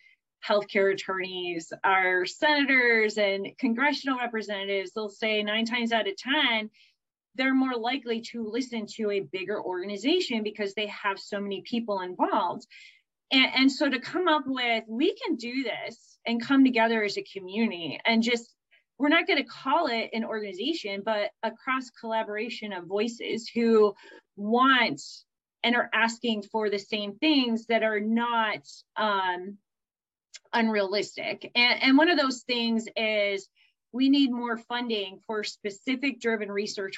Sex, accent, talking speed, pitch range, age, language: female, American, 145 wpm, 205-260 Hz, 20-39, English